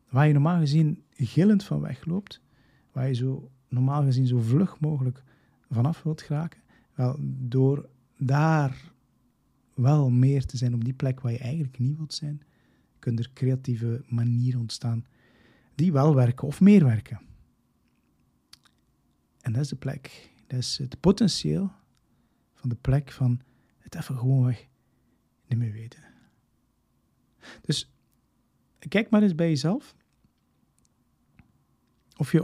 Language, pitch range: Dutch, 125-150 Hz